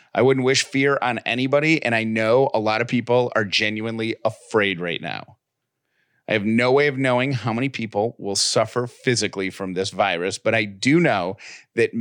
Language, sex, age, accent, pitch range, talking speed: English, male, 40-59, American, 105-130 Hz, 190 wpm